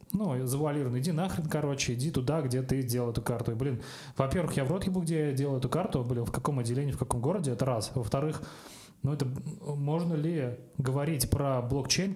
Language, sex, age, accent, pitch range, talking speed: Russian, male, 20-39, native, 125-150 Hz, 200 wpm